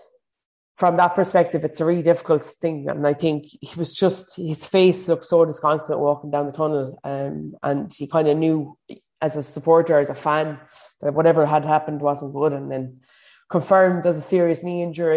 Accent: Irish